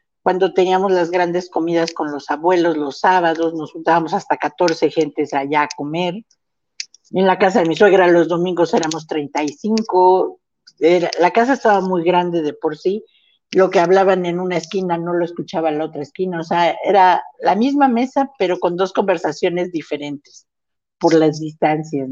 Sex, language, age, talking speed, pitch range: female, Spanish, 50-69, 175 wpm, 160-195 Hz